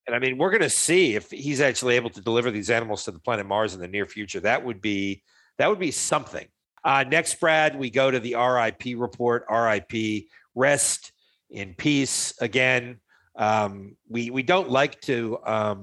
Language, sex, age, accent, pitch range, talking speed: English, male, 50-69, American, 100-125 Hz, 190 wpm